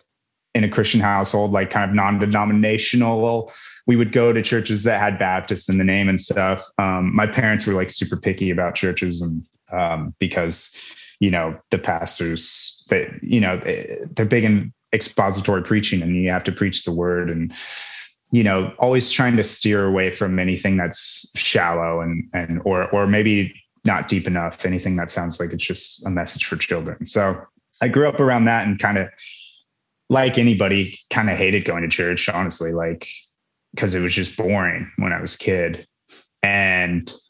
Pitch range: 90-110 Hz